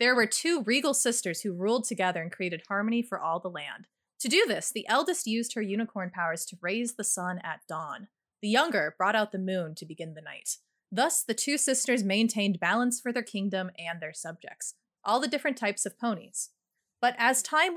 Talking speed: 205 wpm